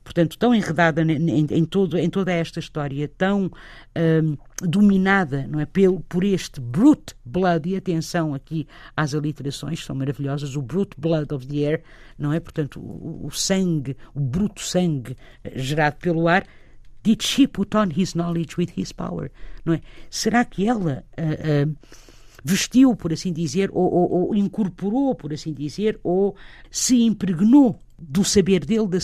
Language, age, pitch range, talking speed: Portuguese, 50-69, 150-190 Hz, 165 wpm